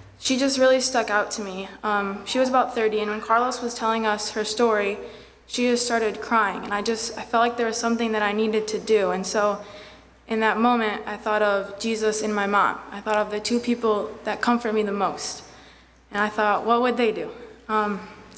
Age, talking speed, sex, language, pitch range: 20-39, 225 wpm, female, English, 205-225 Hz